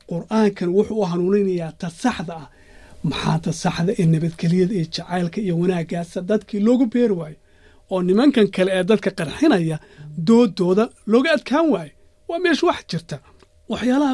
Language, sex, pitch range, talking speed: Kannada, male, 180-235 Hz, 125 wpm